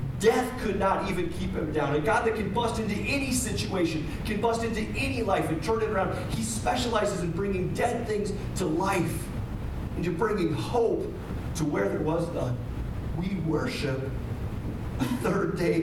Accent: American